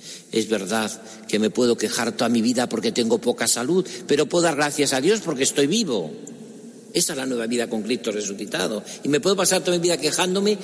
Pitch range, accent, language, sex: 125-160 Hz, Spanish, Spanish, male